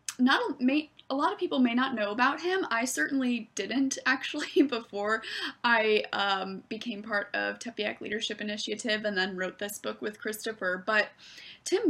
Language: English